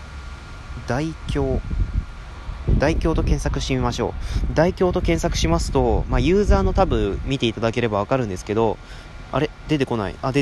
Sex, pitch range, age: male, 95-155 Hz, 20-39